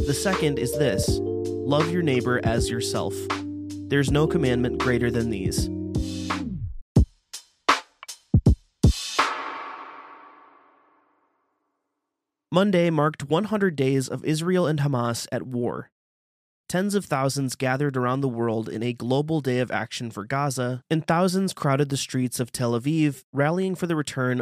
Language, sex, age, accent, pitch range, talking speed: English, male, 30-49, American, 120-150 Hz, 130 wpm